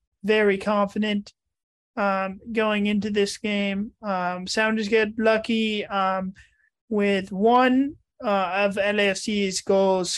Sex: male